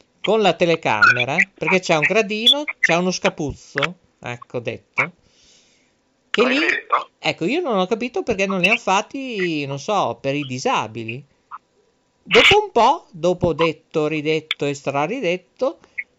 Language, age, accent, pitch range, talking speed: Italian, 50-69, native, 140-205 Hz, 135 wpm